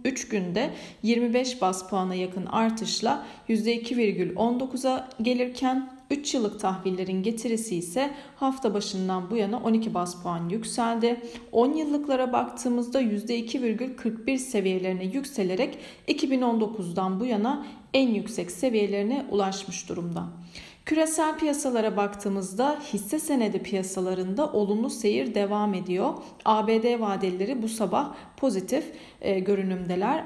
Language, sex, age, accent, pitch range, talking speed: Turkish, female, 40-59, native, 190-255 Hz, 105 wpm